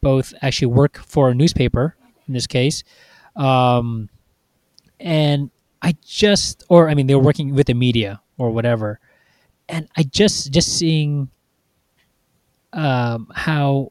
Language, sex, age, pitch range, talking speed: English, male, 20-39, 125-160 Hz, 135 wpm